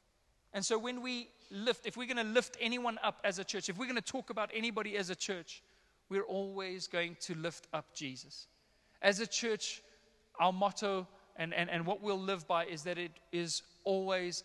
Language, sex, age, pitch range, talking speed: English, male, 30-49, 165-210 Hz, 195 wpm